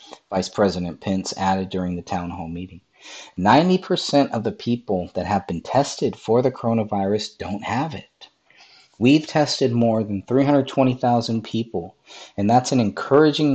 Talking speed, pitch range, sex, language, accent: 165 wpm, 100-130 Hz, male, English, American